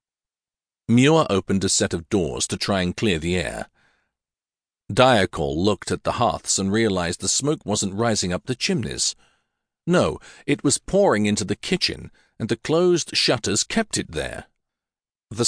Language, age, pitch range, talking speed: English, 50-69, 95-120 Hz, 160 wpm